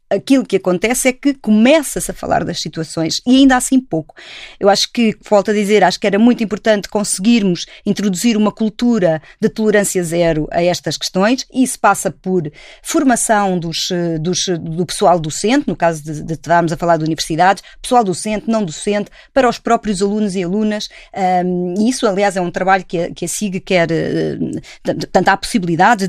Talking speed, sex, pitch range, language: 185 wpm, female, 175-225 Hz, Portuguese